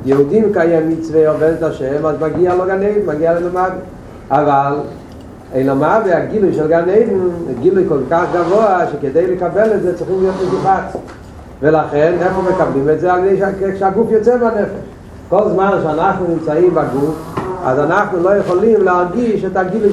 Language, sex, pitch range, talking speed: Hebrew, male, 170-220 Hz, 165 wpm